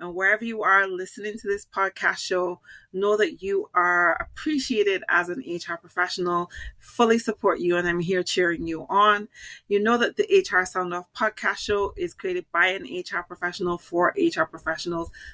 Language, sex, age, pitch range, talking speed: English, female, 30-49, 175-220 Hz, 175 wpm